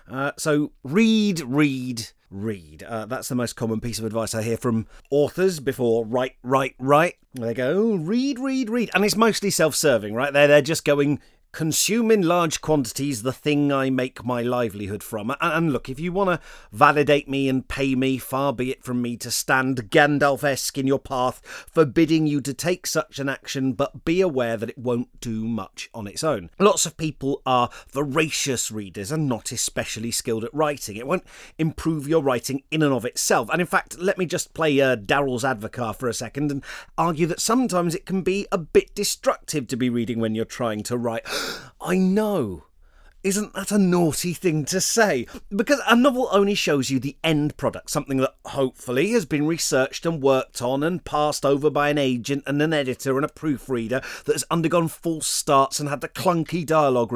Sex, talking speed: male, 195 wpm